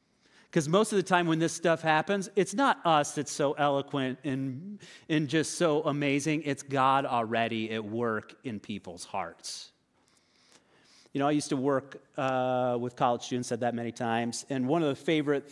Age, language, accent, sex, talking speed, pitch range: 30-49, English, American, male, 180 wpm, 130-175 Hz